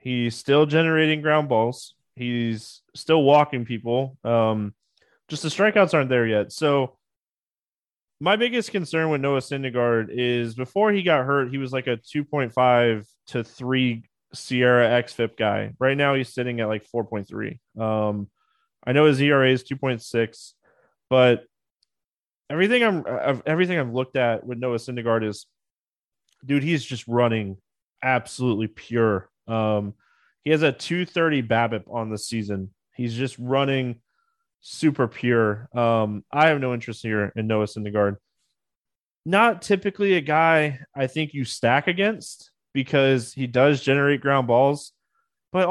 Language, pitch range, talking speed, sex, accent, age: English, 115-155 Hz, 150 wpm, male, American, 20-39